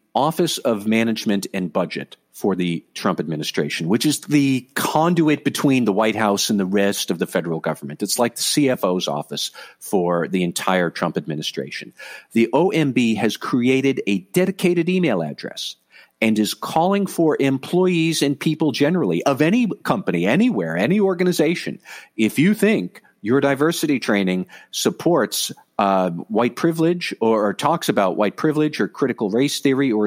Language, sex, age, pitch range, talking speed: English, male, 50-69, 105-155 Hz, 155 wpm